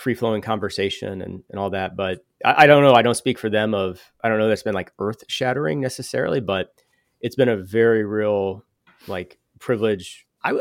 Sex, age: male, 30-49